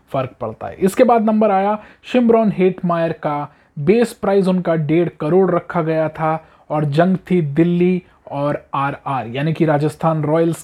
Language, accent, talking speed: Hindi, native, 170 wpm